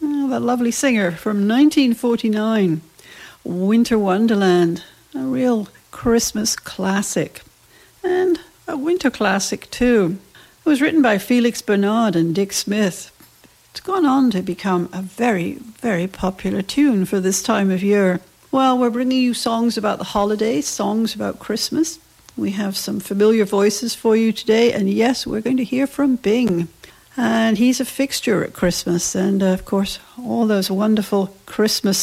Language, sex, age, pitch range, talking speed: English, female, 60-79, 195-260 Hz, 150 wpm